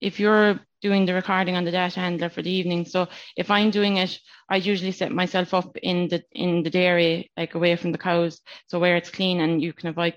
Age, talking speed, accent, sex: 20-39, 235 wpm, Irish, female